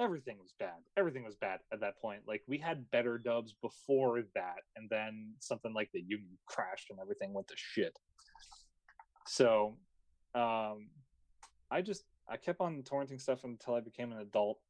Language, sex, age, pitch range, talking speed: English, male, 30-49, 100-120 Hz, 170 wpm